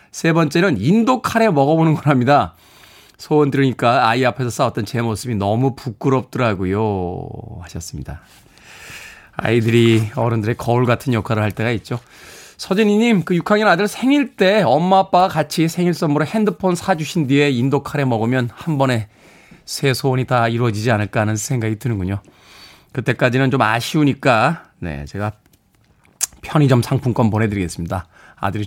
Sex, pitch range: male, 115-195 Hz